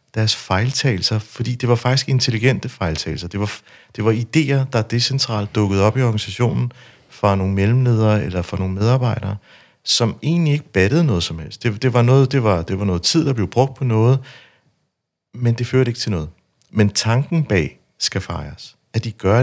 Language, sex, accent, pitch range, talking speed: Danish, male, native, 100-125 Hz, 175 wpm